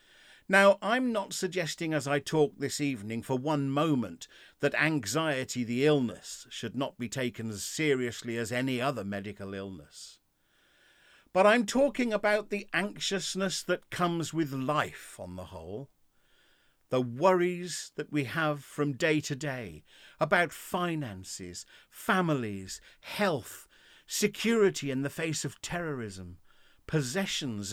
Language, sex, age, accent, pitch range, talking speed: English, male, 50-69, British, 115-180 Hz, 130 wpm